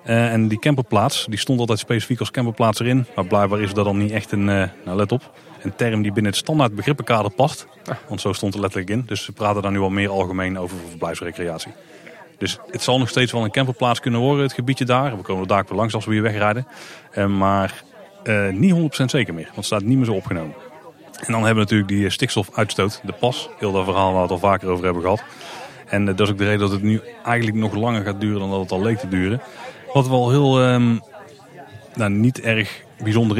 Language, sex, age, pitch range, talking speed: Dutch, male, 30-49, 100-125 Hz, 240 wpm